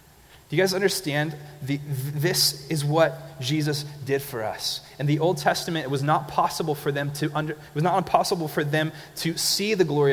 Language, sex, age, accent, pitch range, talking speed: English, male, 30-49, American, 140-180 Hz, 195 wpm